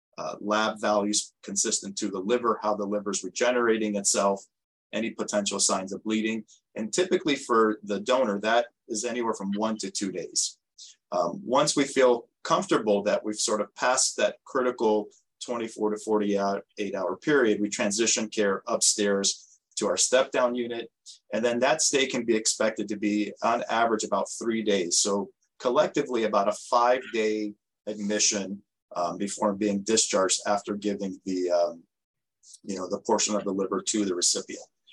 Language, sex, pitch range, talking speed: English, male, 105-120 Hz, 160 wpm